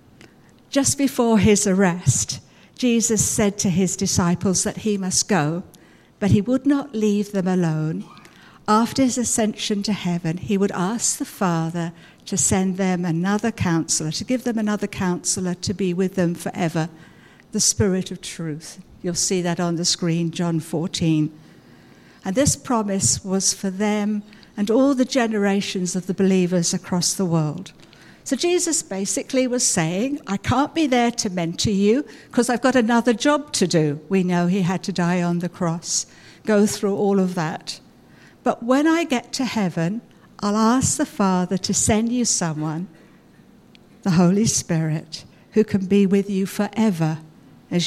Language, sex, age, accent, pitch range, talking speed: English, female, 60-79, British, 175-220 Hz, 165 wpm